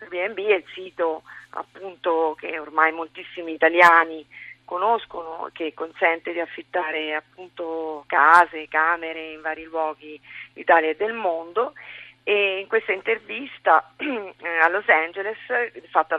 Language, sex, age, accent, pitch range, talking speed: Italian, female, 40-59, native, 160-185 Hz, 120 wpm